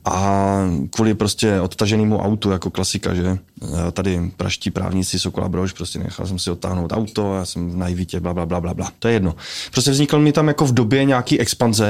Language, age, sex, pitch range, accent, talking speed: Czech, 20-39, male, 110-135 Hz, native, 205 wpm